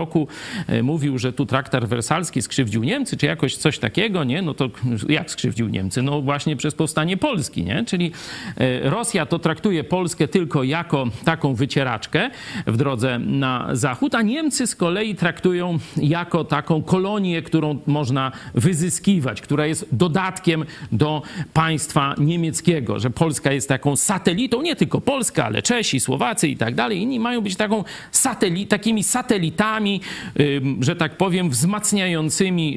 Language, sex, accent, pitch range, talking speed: Polish, male, native, 135-180 Hz, 145 wpm